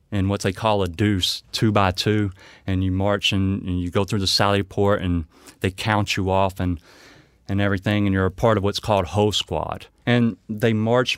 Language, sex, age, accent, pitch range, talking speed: English, male, 30-49, American, 95-120 Hz, 210 wpm